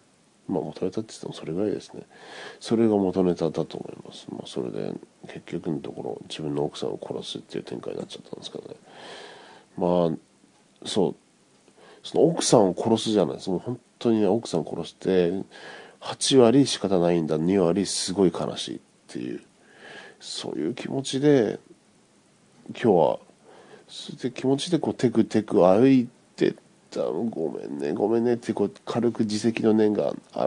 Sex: male